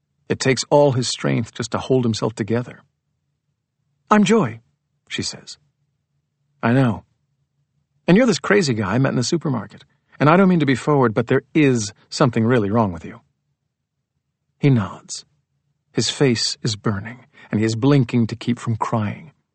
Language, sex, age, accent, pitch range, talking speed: English, male, 50-69, American, 120-145 Hz, 170 wpm